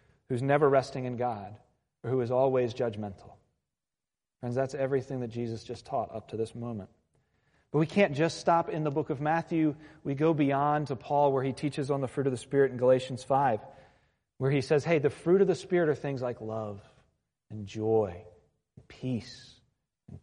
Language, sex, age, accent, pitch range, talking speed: English, male, 40-59, American, 115-145 Hz, 195 wpm